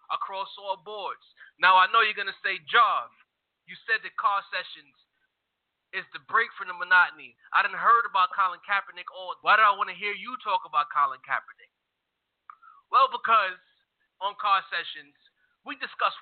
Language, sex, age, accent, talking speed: English, male, 20-39, American, 175 wpm